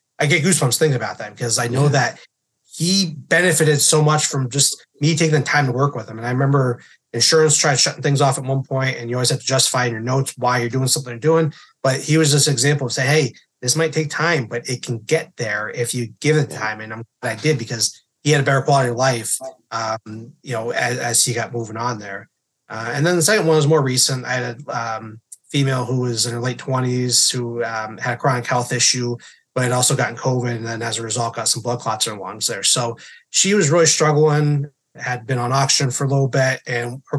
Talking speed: 250 wpm